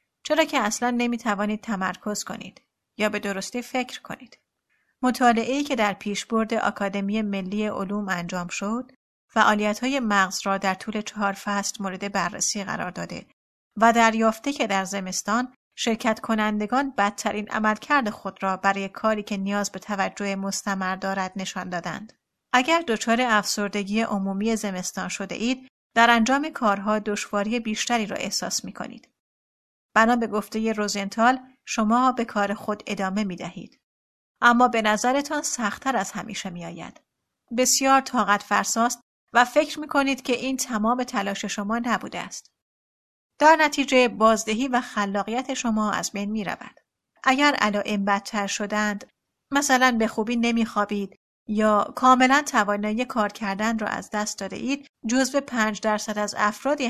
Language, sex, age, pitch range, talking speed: Persian, female, 30-49, 200-245 Hz, 145 wpm